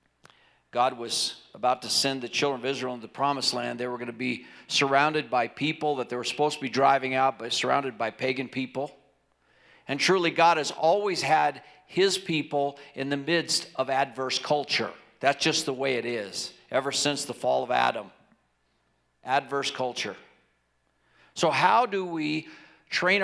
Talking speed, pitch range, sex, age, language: 175 wpm, 125-150 Hz, male, 50-69, English